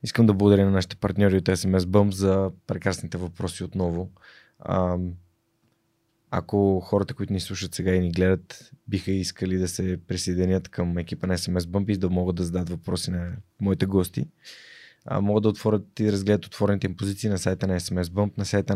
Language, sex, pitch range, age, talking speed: Bulgarian, male, 90-105 Hz, 20-39, 180 wpm